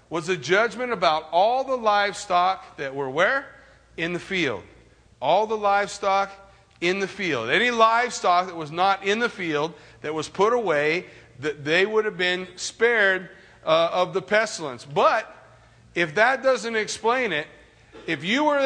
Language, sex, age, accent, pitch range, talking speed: English, male, 50-69, American, 180-240 Hz, 160 wpm